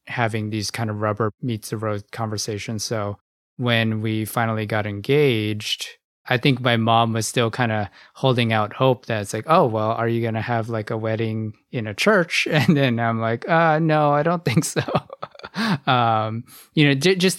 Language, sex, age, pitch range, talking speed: English, male, 20-39, 110-125 Hz, 195 wpm